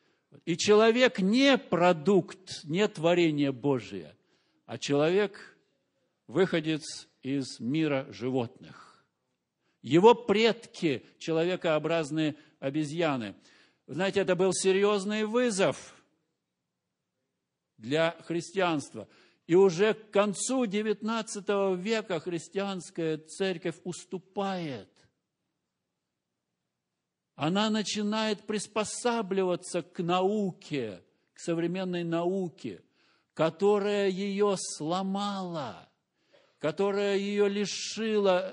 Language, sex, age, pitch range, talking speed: Russian, male, 50-69, 145-195 Hz, 75 wpm